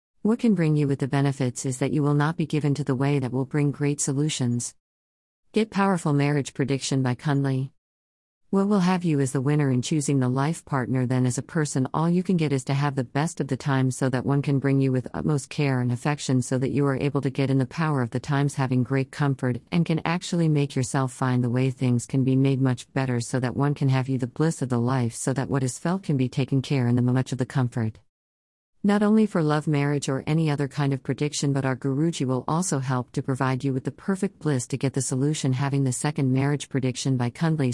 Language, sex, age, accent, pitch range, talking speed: Hindi, female, 40-59, American, 130-145 Hz, 250 wpm